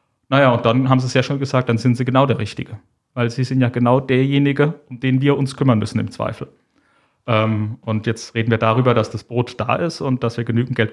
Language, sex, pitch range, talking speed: German, male, 115-140 Hz, 245 wpm